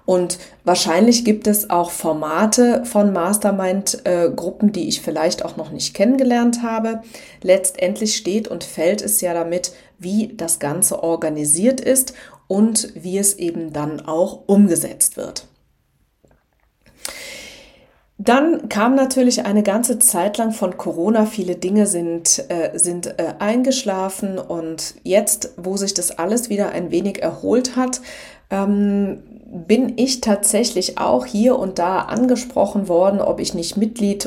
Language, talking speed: German, 135 wpm